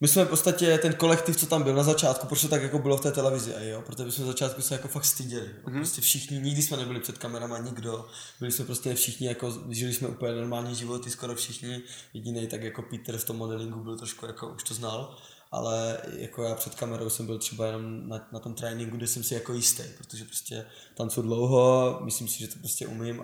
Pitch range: 120-135 Hz